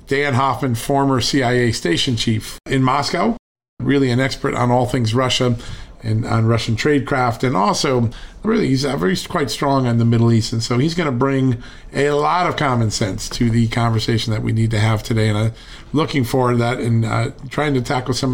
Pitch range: 115-135 Hz